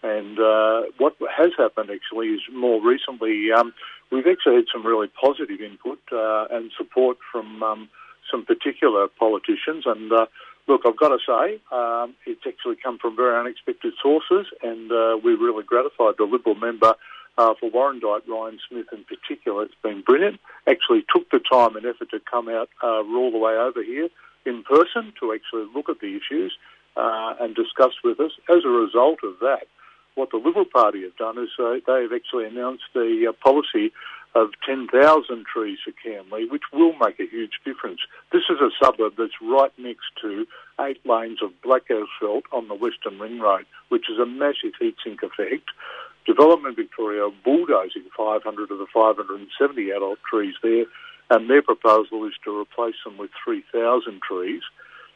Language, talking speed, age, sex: English, 175 wpm, 50-69, male